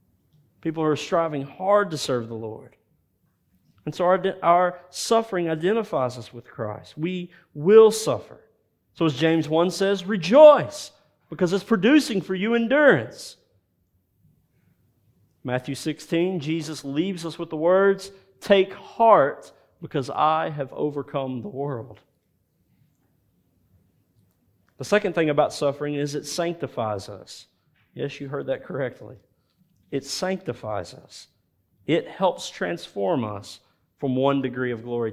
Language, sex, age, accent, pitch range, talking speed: English, male, 40-59, American, 135-190 Hz, 130 wpm